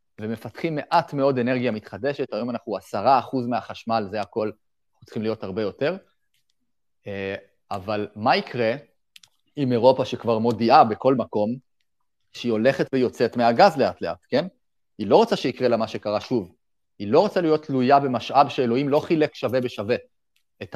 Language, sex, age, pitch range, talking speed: Hebrew, male, 30-49, 110-140 Hz, 155 wpm